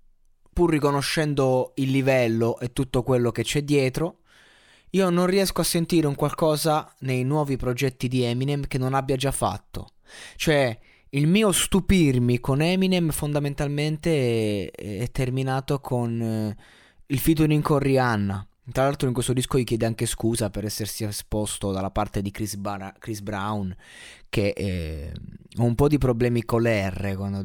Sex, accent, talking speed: male, native, 155 wpm